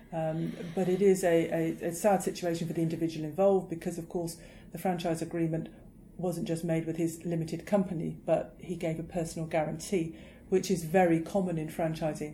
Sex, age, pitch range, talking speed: female, 40-59, 160-175 Hz, 190 wpm